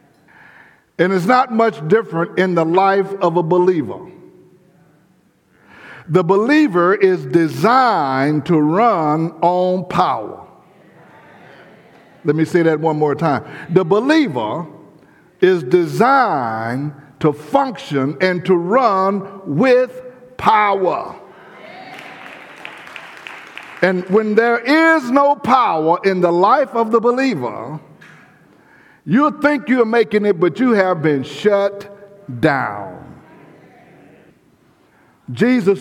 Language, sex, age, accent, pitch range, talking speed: English, male, 60-79, American, 170-225 Hz, 100 wpm